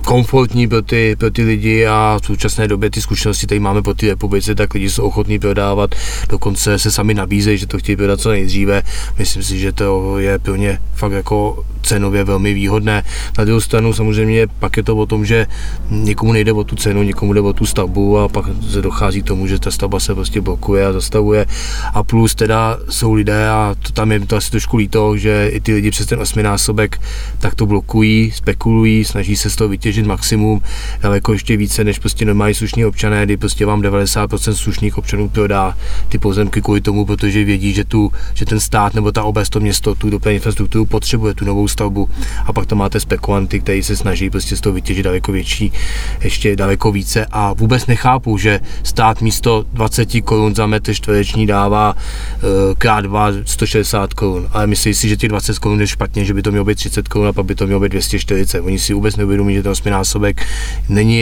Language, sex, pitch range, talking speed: Czech, male, 100-110 Hz, 205 wpm